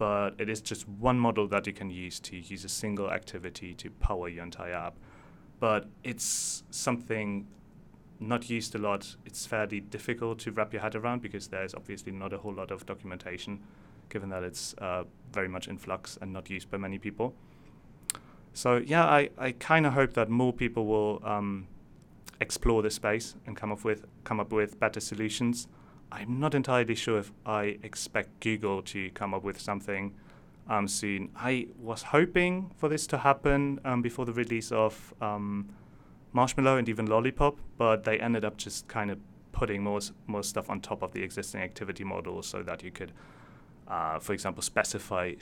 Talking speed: 185 wpm